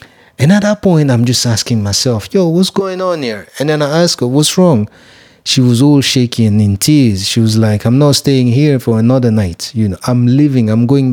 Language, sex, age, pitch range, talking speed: English, male, 30-49, 110-135 Hz, 225 wpm